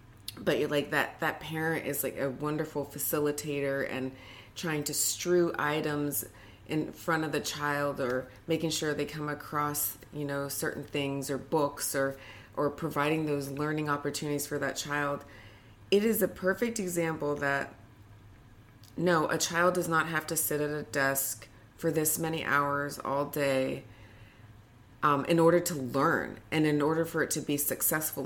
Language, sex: English, female